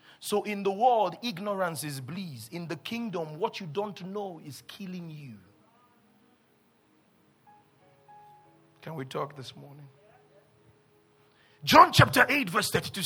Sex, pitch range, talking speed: male, 155-235 Hz, 125 wpm